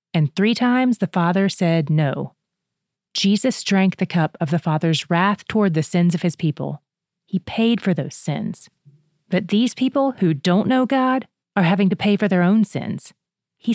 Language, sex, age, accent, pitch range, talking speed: English, female, 30-49, American, 165-210 Hz, 185 wpm